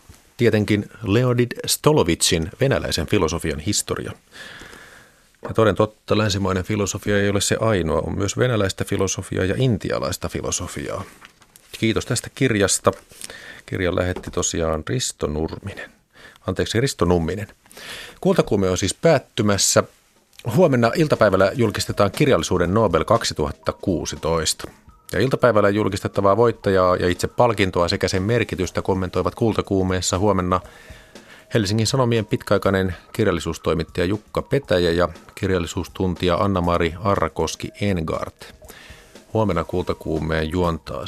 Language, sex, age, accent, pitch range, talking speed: Finnish, male, 30-49, native, 90-110 Hz, 100 wpm